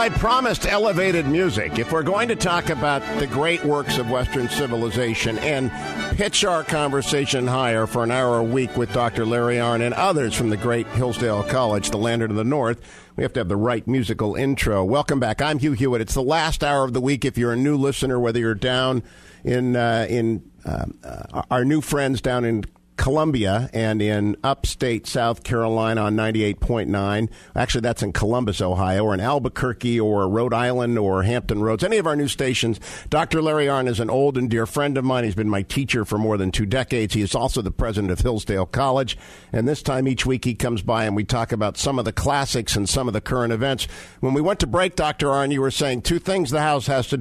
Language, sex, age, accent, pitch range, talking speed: English, male, 50-69, American, 110-140 Hz, 220 wpm